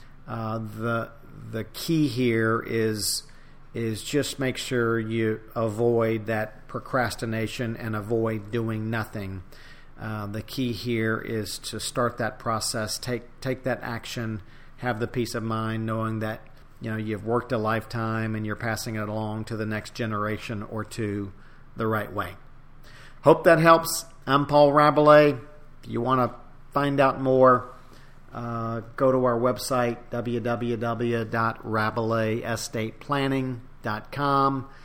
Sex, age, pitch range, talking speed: male, 50-69, 110-130 Hz, 135 wpm